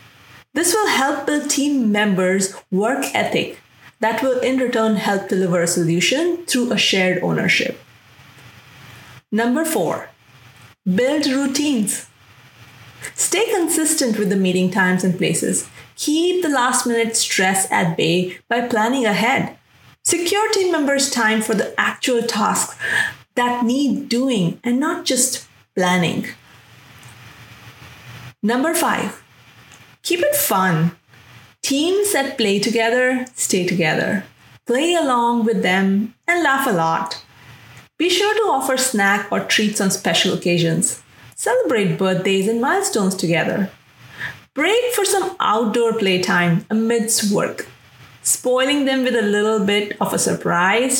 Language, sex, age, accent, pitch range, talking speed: English, female, 30-49, Indian, 180-265 Hz, 125 wpm